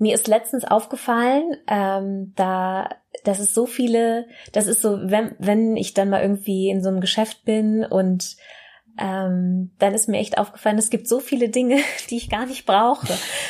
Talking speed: 180 wpm